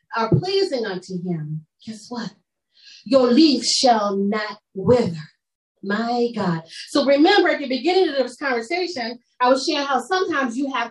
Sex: female